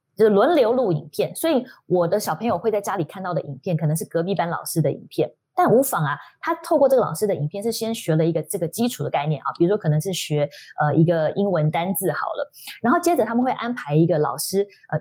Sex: female